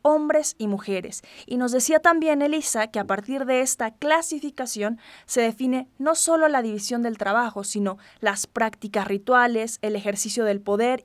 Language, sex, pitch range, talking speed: Spanish, female, 210-265 Hz, 165 wpm